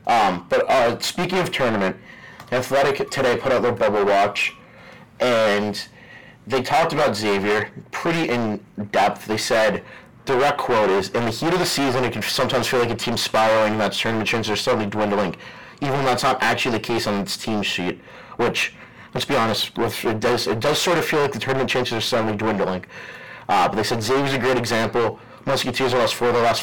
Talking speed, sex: 205 wpm, male